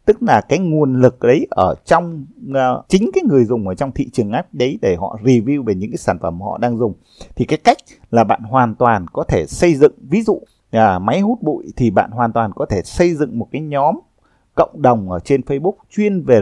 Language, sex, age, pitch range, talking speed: Vietnamese, male, 20-39, 115-165 Hz, 230 wpm